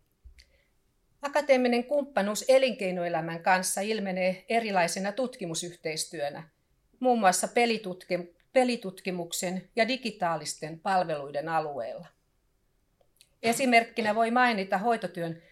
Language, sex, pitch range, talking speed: Finnish, female, 165-225 Hz, 70 wpm